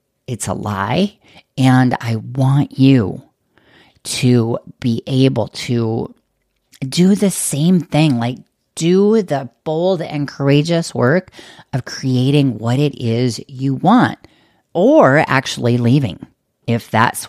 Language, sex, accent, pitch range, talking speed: English, female, American, 115-145 Hz, 120 wpm